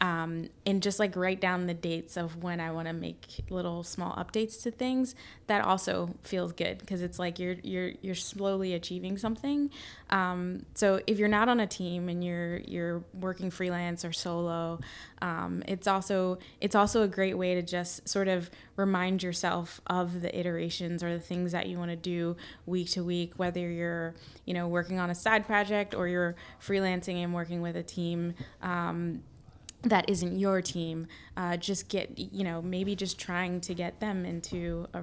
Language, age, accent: English, 10-29, American